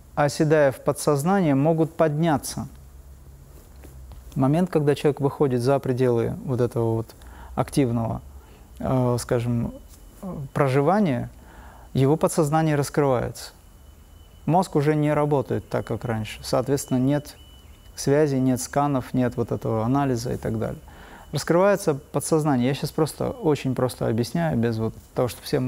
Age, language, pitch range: 30-49, Russian, 115-155 Hz